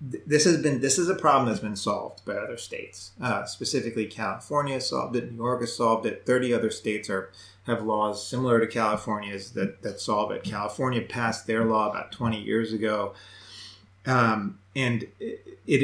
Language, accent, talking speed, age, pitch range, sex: English, American, 180 wpm, 30-49, 105-125 Hz, male